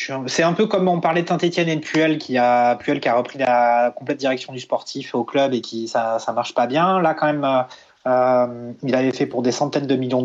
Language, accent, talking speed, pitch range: French, French, 250 wpm, 120-145 Hz